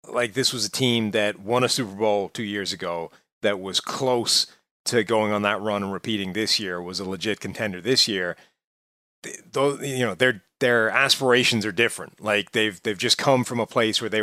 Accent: American